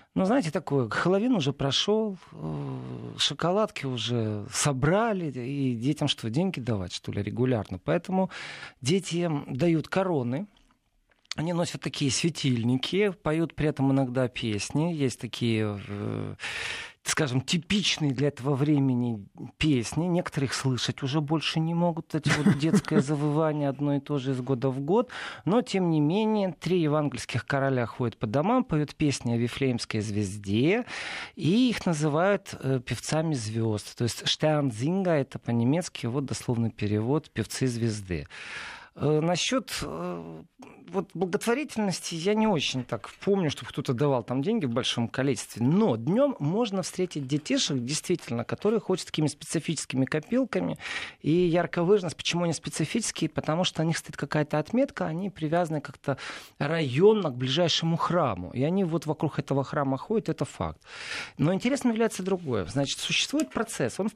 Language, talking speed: Russian, 140 wpm